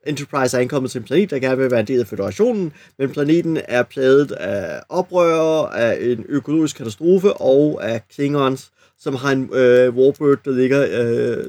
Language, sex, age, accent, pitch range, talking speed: Danish, male, 30-49, native, 125-160 Hz, 180 wpm